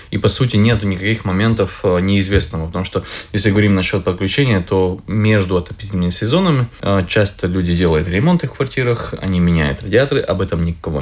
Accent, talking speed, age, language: native, 160 wpm, 20-39, Russian